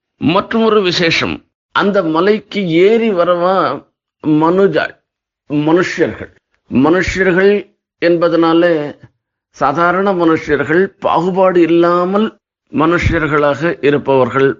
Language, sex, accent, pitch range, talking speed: Tamil, male, native, 155-195 Hz, 70 wpm